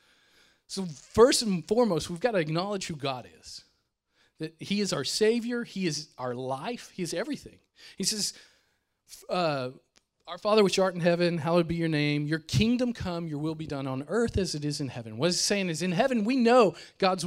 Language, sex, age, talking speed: English, male, 40-59, 200 wpm